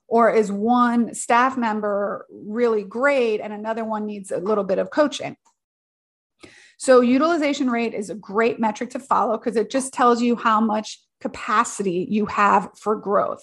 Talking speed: 165 wpm